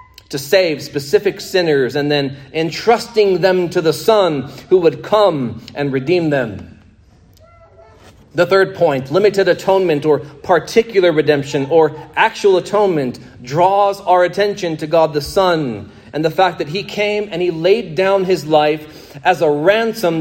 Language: English